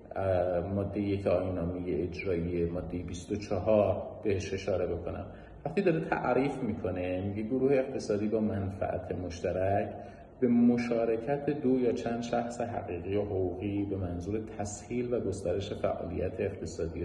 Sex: male